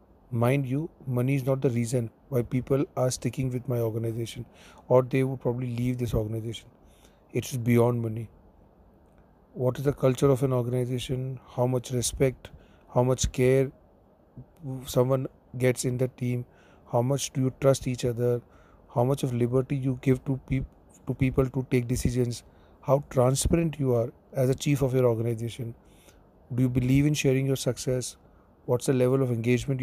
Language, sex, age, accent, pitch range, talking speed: English, male, 40-59, Indian, 120-135 Hz, 170 wpm